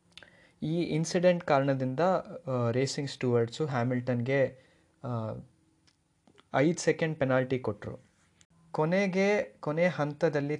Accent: native